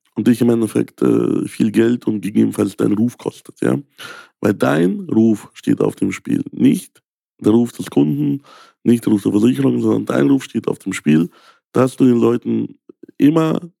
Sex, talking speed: male, 185 wpm